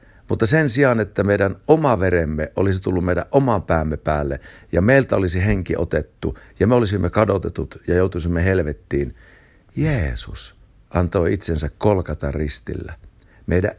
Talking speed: 130 wpm